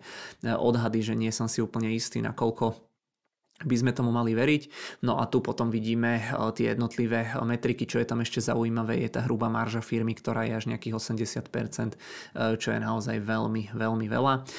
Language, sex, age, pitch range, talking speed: Czech, male, 20-39, 115-120 Hz, 175 wpm